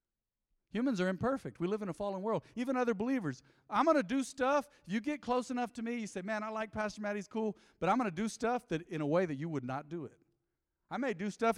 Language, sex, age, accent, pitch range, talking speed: English, male, 50-69, American, 125-190 Hz, 265 wpm